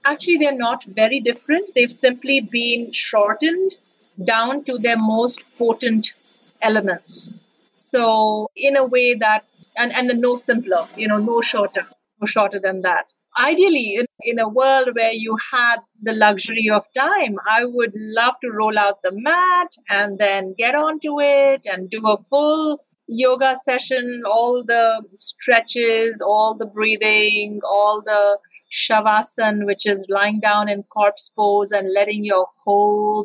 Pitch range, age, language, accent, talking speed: 205-255 Hz, 50-69, English, Indian, 150 wpm